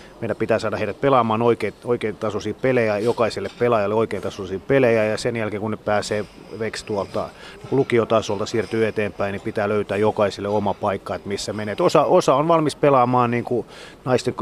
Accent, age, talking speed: native, 30-49, 175 wpm